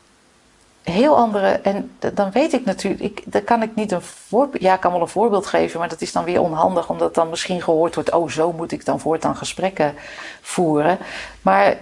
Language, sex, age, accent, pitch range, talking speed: Dutch, female, 40-59, Dutch, 160-200 Hz, 210 wpm